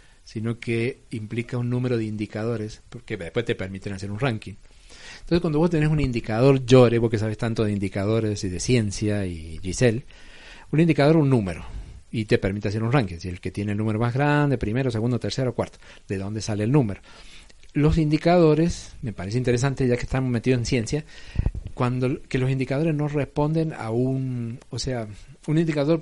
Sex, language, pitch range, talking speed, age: male, Spanish, 105-130 Hz, 190 wpm, 40-59